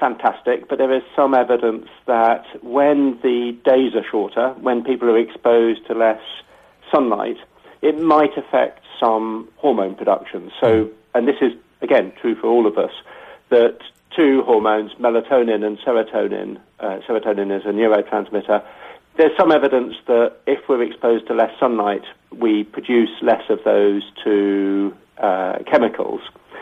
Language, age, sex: English, 50-69, male